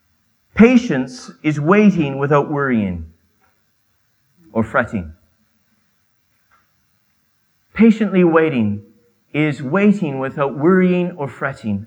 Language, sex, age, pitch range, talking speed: English, male, 40-59, 130-195 Hz, 75 wpm